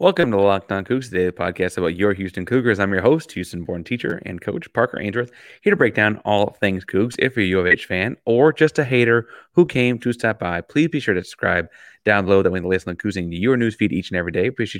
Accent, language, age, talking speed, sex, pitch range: American, English, 20-39, 260 wpm, male, 95-120 Hz